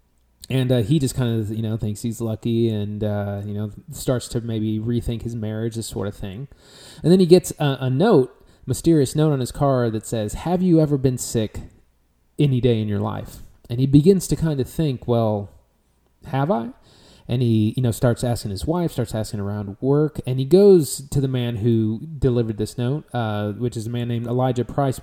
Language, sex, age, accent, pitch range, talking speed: English, male, 30-49, American, 105-130 Hz, 215 wpm